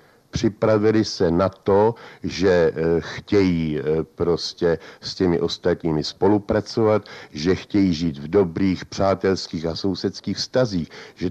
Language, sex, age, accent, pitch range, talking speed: Czech, male, 60-79, native, 90-120 Hz, 110 wpm